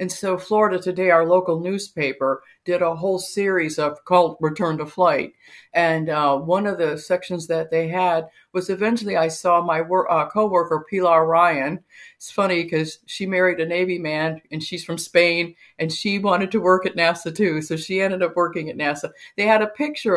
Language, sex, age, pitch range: English, female, 60-79, 160-195 Hz